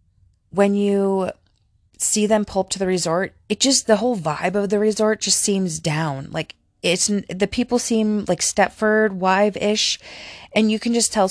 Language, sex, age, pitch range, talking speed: English, female, 20-39, 175-205 Hz, 175 wpm